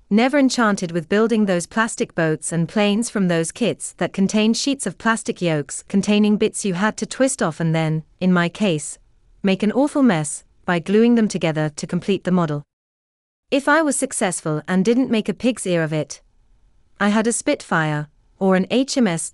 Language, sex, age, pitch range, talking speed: English, female, 30-49, 160-230 Hz, 190 wpm